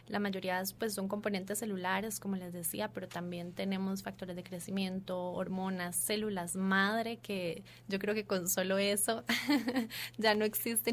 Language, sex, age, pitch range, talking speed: Spanish, female, 20-39, 195-215 Hz, 155 wpm